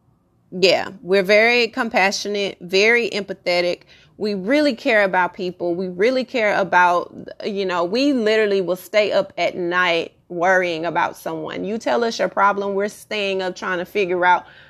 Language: English